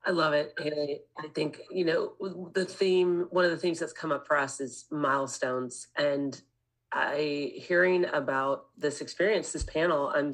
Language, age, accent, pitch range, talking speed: English, 30-49, American, 145-180 Hz, 170 wpm